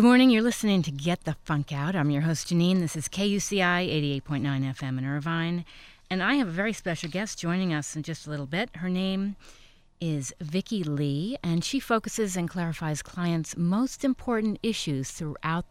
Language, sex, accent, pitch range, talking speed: English, female, American, 155-210 Hz, 185 wpm